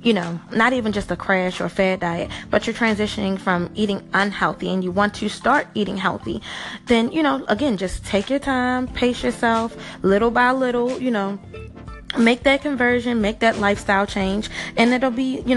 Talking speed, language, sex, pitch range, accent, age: 190 wpm, English, female, 195-245 Hz, American, 20-39